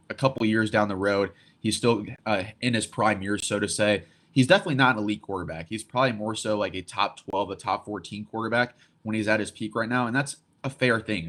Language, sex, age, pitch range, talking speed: English, male, 20-39, 100-115 Hz, 250 wpm